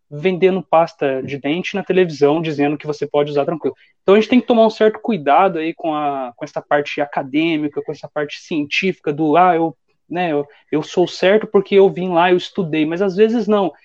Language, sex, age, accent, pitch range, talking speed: Portuguese, male, 20-39, Brazilian, 160-205 Hz, 205 wpm